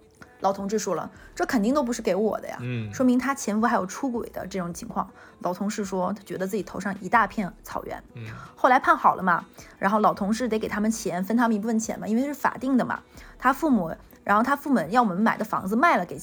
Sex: female